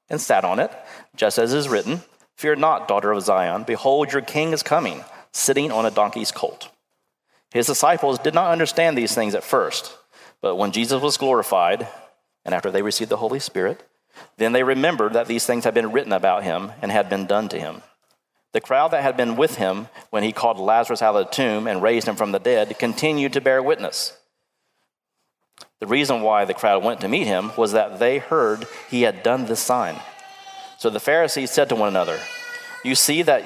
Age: 40-59